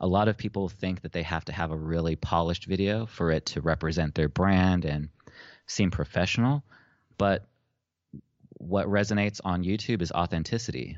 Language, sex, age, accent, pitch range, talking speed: English, male, 30-49, American, 80-95 Hz, 165 wpm